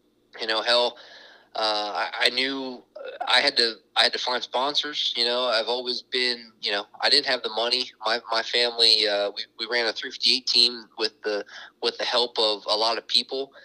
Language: English